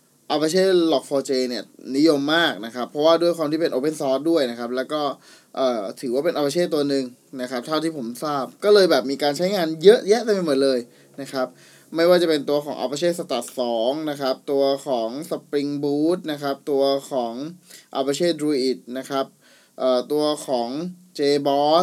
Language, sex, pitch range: Thai, male, 130-160 Hz